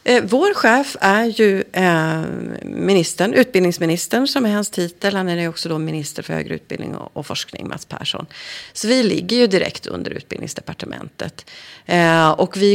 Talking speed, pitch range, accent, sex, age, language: 145 wpm, 165-230 Hz, native, female, 40-59, Swedish